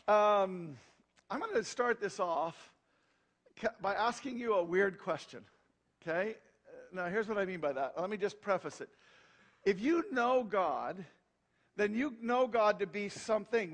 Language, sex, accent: English, male, American